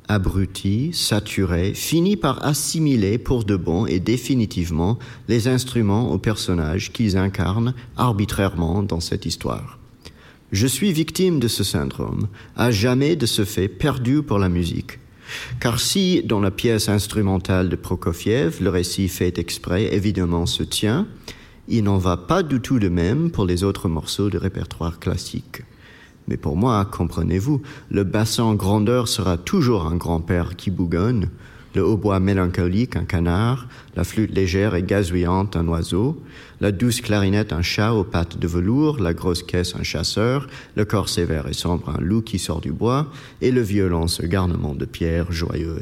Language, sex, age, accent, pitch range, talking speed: French, male, 50-69, French, 90-120 Hz, 160 wpm